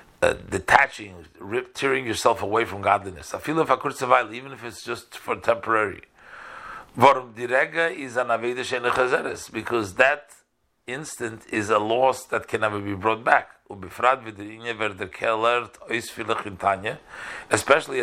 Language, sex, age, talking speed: English, male, 50-69, 115 wpm